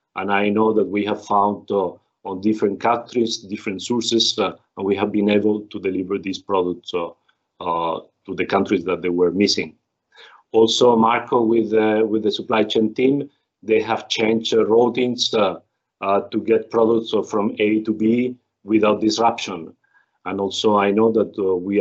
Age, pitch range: 50-69, 100-115 Hz